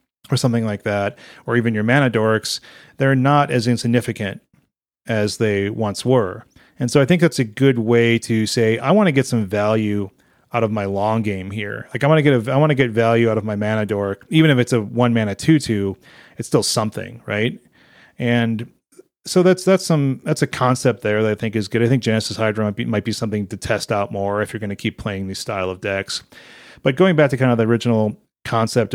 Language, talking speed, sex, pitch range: English, 235 wpm, male, 110-140 Hz